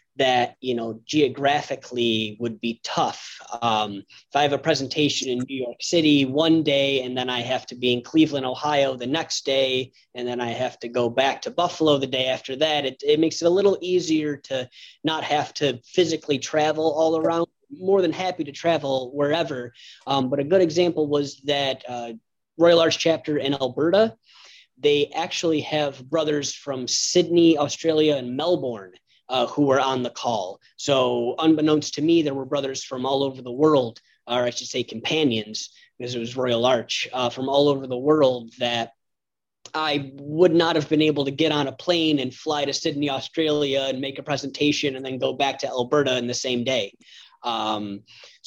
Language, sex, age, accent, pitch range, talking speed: English, male, 30-49, American, 130-160 Hz, 190 wpm